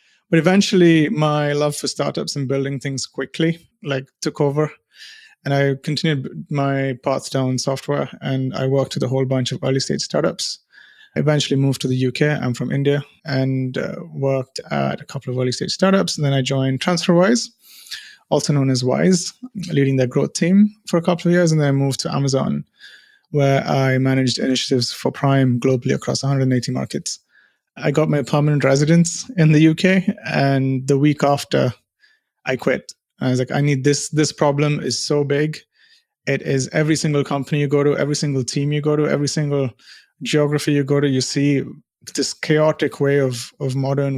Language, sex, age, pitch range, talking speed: English, male, 30-49, 135-160 Hz, 185 wpm